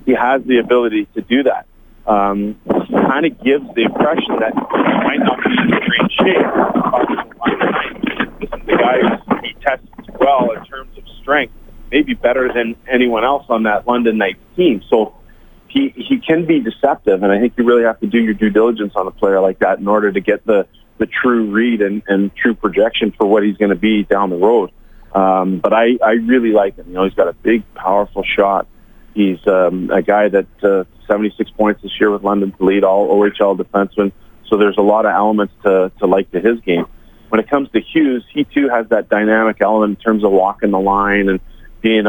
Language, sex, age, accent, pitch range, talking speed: English, male, 30-49, American, 100-115 Hz, 220 wpm